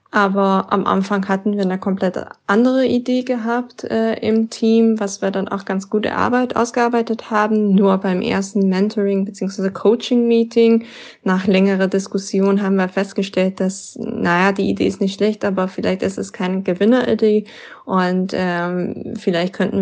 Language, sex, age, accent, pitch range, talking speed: German, female, 20-39, German, 185-215 Hz, 155 wpm